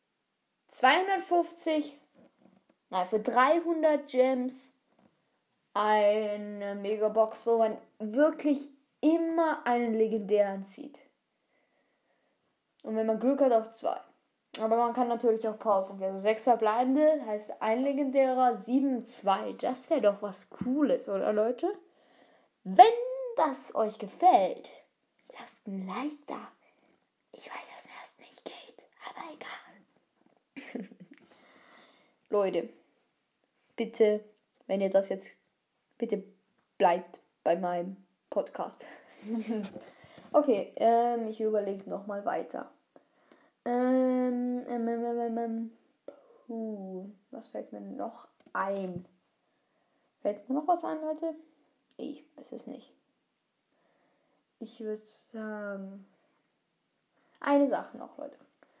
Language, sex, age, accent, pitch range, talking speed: German, female, 10-29, German, 210-275 Hz, 105 wpm